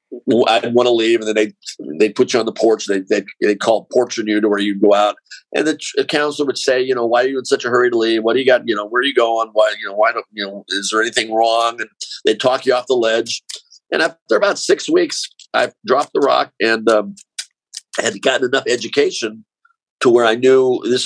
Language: English